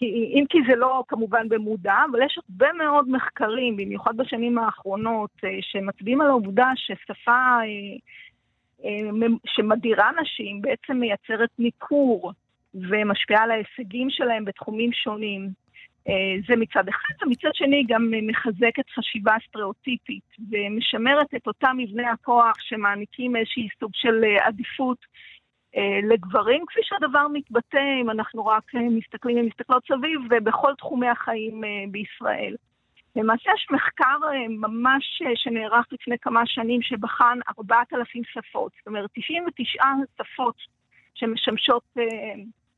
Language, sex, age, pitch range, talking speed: Hebrew, female, 50-69, 220-265 Hz, 110 wpm